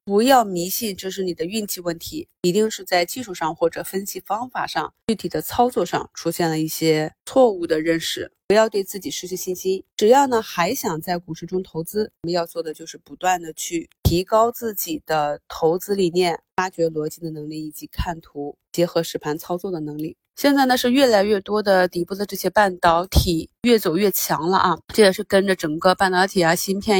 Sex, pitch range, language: female, 170-200 Hz, Chinese